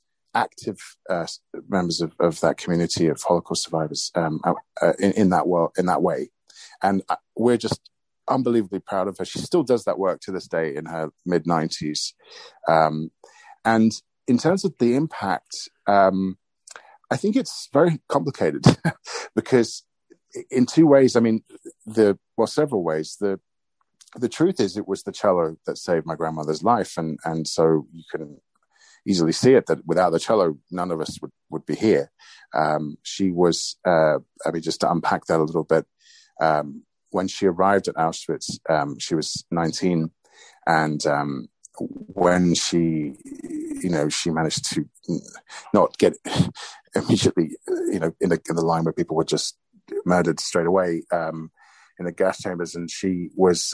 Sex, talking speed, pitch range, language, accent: male, 165 wpm, 80-110 Hz, English, British